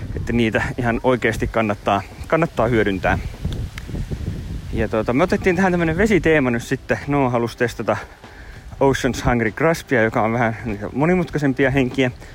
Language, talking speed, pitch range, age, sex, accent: Finnish, 130 wpm, 100-130 Hz, 30-49, male, native